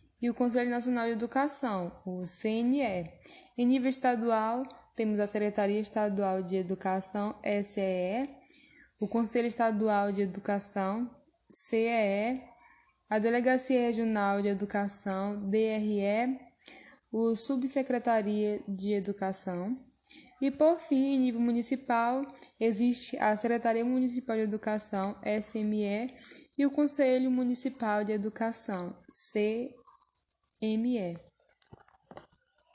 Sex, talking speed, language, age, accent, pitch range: female, 100 wpm, Portuguese, 10-29, Brazilian, 205-250 Hz